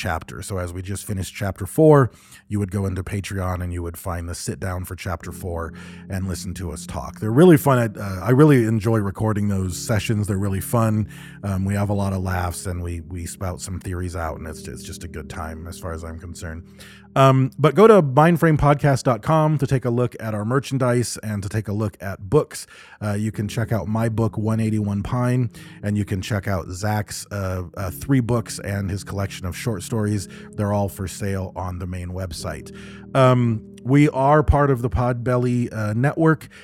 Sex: male